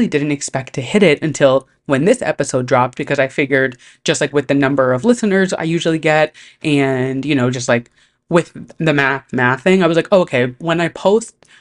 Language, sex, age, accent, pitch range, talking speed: English, female, 20-39, American, 140-195 Hz, 210 wpm